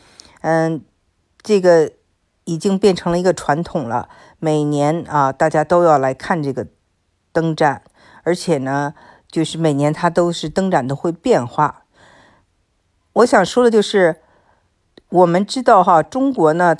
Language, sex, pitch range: Chinese, female, 150-195 Hz